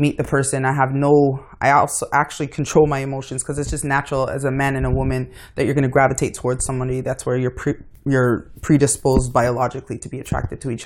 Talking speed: 220 wpm